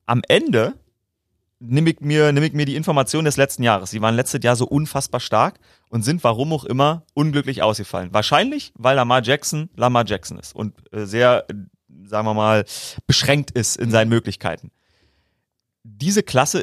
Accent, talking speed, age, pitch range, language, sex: German, 165 wpm, 30-49, 115-145 Hz, German, male